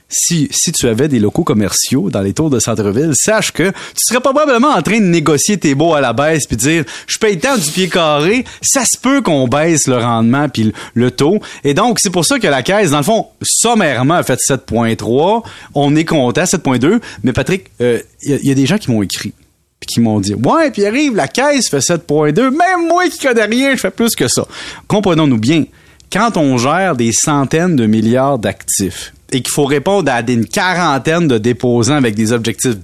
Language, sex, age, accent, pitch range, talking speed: French, male, 30-49, Canadian, 130-185 Hz, 215 wpm